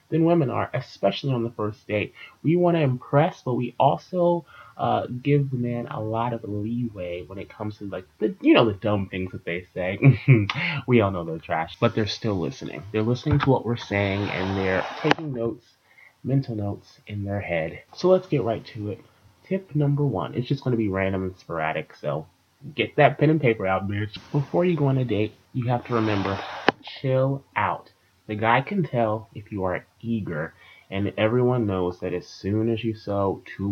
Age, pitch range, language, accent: 20-39, 100-140 Hz, English, American